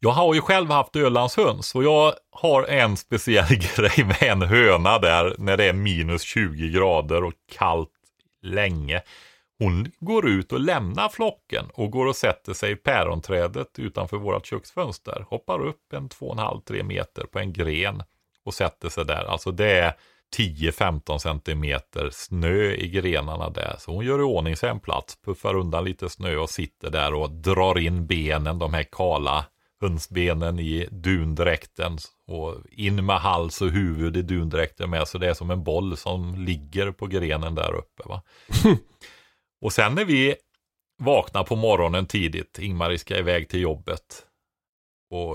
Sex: male